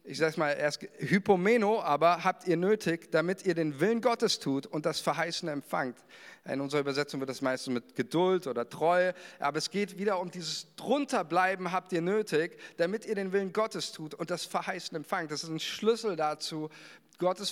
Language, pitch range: German, 155-190 Hz